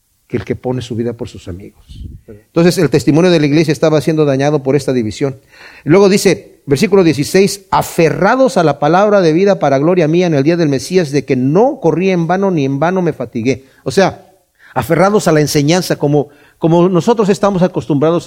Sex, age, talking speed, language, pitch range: male, 50-69, 200 wpm, Spanish, 130-185 Hz